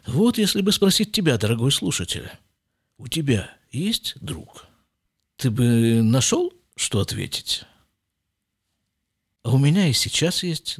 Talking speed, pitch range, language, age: 120 wpm, 110-160 Hz, Russian, 50-69